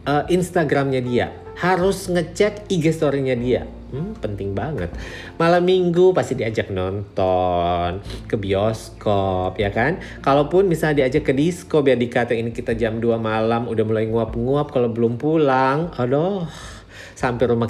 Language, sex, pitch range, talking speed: Indonesian, male, 105-145 Hz, 140 wpm